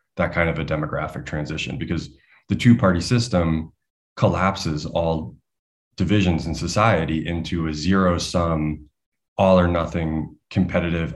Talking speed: 110 wpm